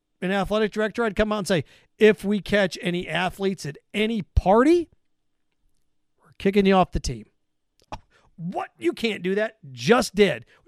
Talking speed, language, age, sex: 175 wpm, English, 40-59, male